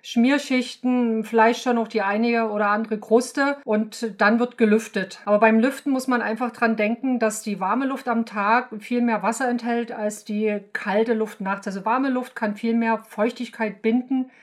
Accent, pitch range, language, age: German, 215-255 Hz, German, 50-69